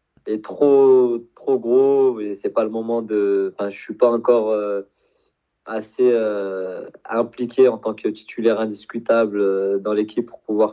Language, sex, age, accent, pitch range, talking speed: French, male, 20-39, French, 100-120 Hz, 155 wpm